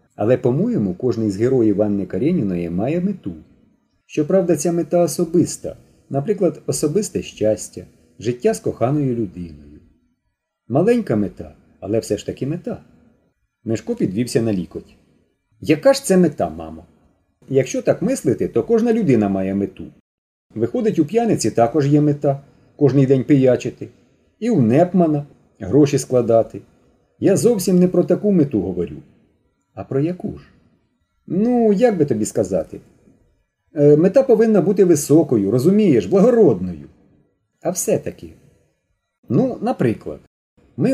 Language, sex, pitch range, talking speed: Ukrainian, male, 110-185 Hz, 130 wpm